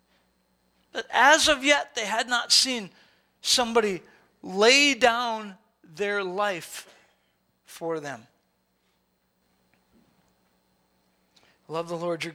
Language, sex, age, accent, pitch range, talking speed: English, male, 40-59, American, 170-255 Hz, 85 wpm